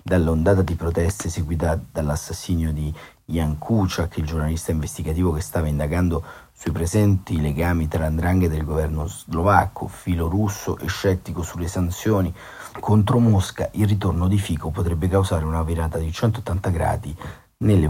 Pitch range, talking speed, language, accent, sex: 80-95 Hz, 145 wpm, Italian, native, male